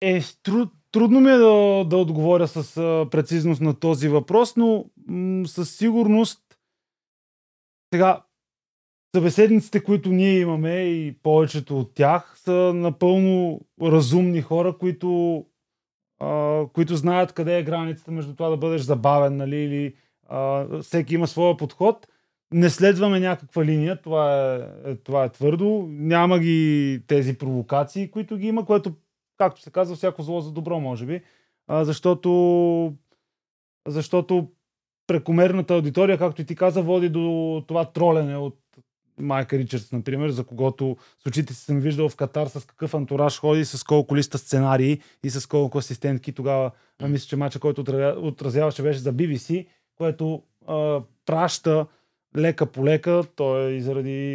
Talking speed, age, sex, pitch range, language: 135 wpm, 20-39, male, 140-180 Hz, Bulgarian